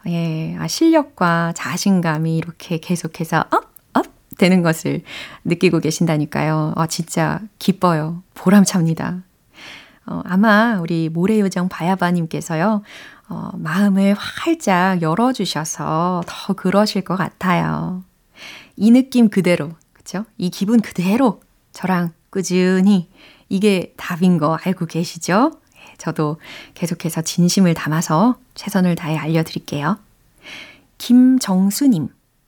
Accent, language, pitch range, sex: native, Korean, 170-210 Hz, female